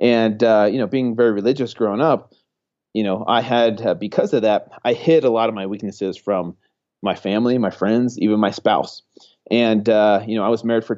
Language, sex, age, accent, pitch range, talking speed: English, male, 30-49, American, 100-115 Hz, 220 wpm